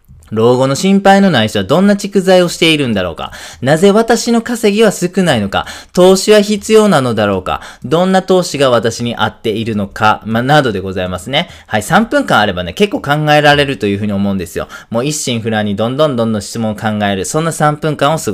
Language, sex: Japanese, male